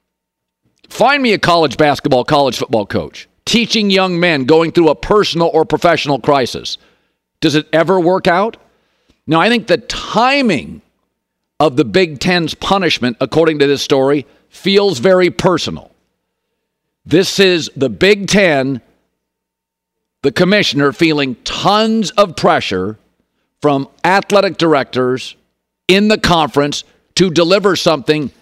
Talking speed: 125 wpm